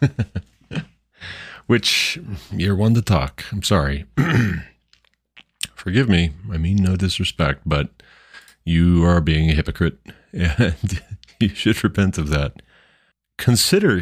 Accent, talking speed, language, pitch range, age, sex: American, 110 wpm, English, 80-100 Hz, 30-49, male